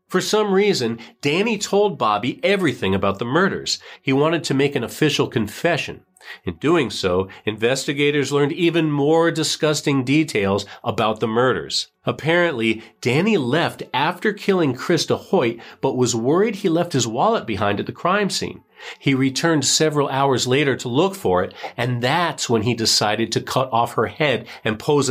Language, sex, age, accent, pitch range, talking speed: English, male, 40-59, American, 115-155 Hz, 165 wpm